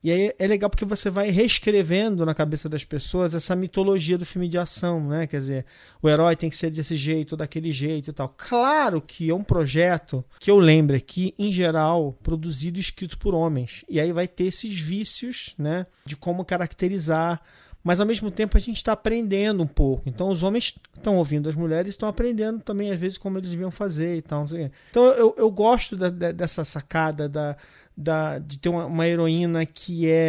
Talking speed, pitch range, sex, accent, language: 205 wpm, 155-190 Hz, male, Brazilian, English